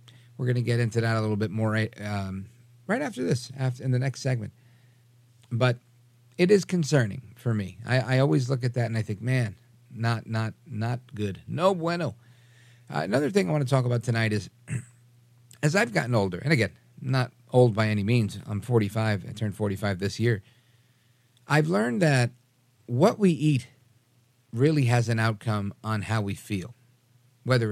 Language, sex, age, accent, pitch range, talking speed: English, male, 50-69, American, 110-130 Hz, 180 wpm